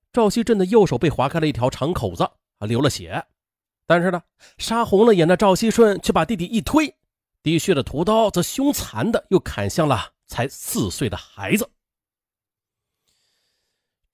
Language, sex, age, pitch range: Chinese, male, 30-49, 120-195 Hz